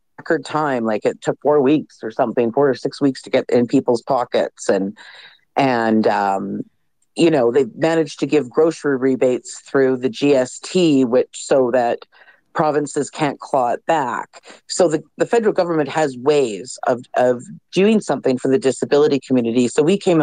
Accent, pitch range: American, 125-155 Hz